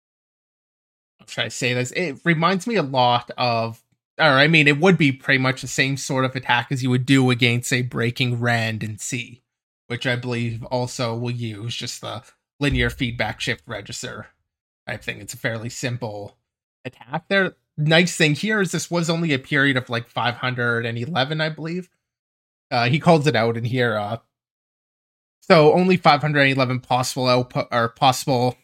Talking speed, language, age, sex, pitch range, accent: 170 wpm, English, 20-39, male, 120-155 Hz, American